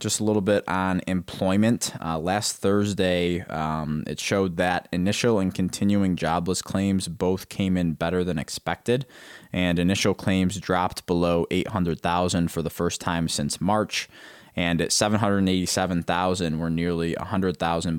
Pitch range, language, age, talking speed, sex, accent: 80-100 Hz, English, 20-39, 140 wpm, male, American